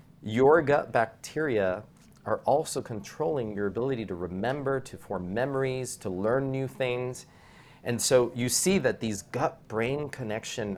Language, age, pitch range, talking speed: English, 40-59, 95-130 Hz, 140 wpm